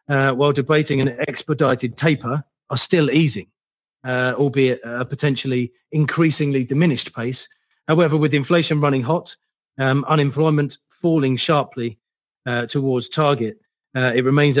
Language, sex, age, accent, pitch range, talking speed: English, male, 40-59, British, 120-145 Hz, 125 wpm